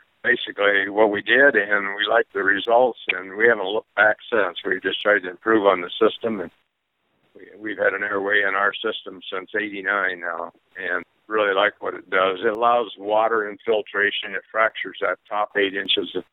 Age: 60-79